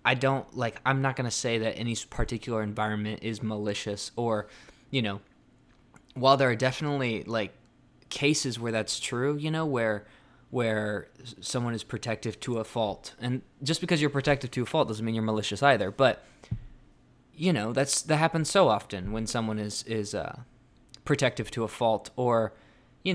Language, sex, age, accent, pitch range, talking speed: English, male, 20-39, American, 110-130 Hz, 175 wpm